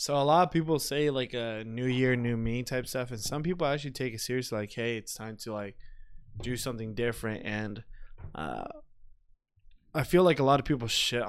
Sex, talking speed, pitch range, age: male, 215 wpm, 105-130 Hz, 20-39